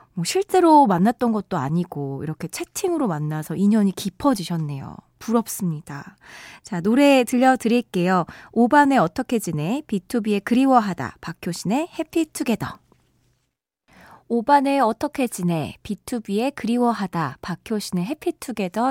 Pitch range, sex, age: 190-265 Hz, female, 20-39